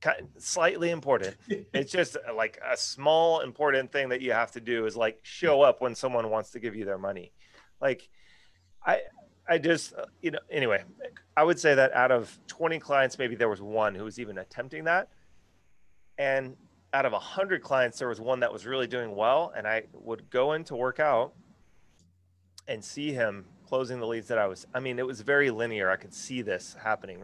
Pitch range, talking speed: 115-155 Hz, 205 wpm